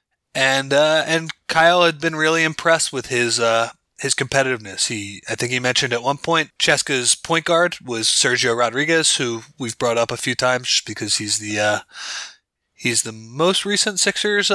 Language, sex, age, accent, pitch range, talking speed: English, male, 20-39, American, 115-160 Hz, 180 wpm